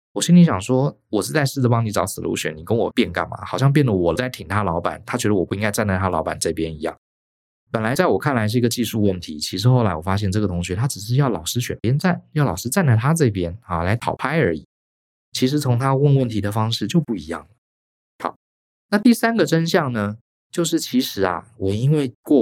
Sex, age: male, 20-39